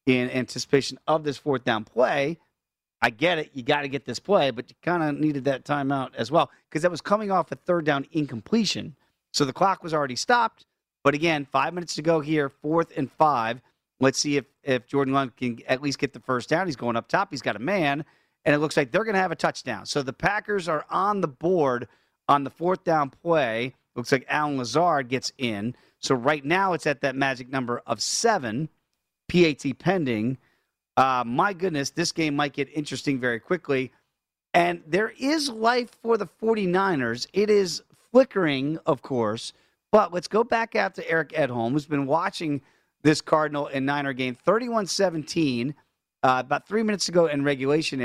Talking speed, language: 195 wpm, English